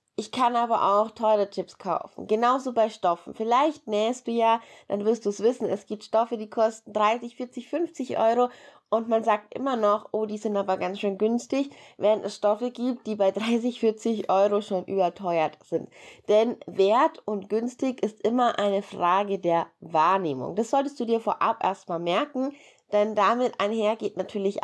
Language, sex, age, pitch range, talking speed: German, female, 20-39, 195-245 Hz, 180 wpm